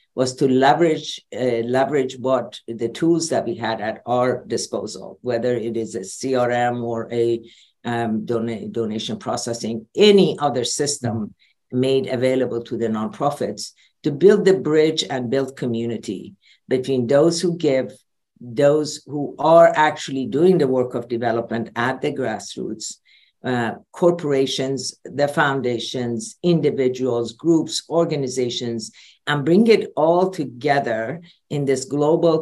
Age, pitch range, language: 50-69, 120-145 Hz, English